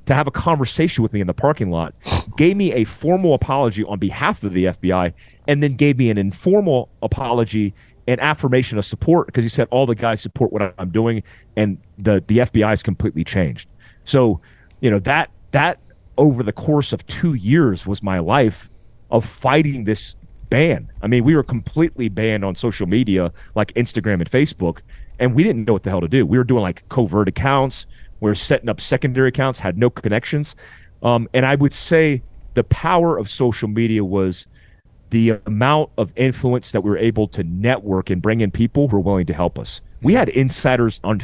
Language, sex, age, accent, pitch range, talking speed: English, male, 30-49, American, 100-130 Hz, 200 wpm